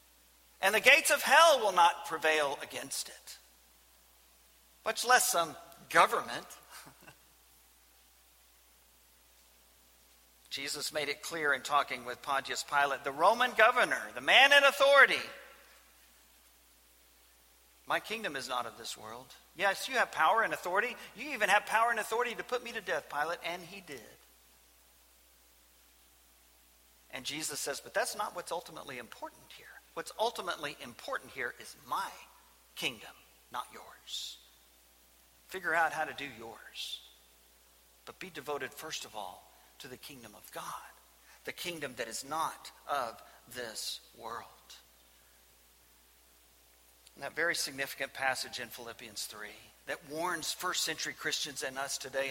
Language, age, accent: English, 50-69, American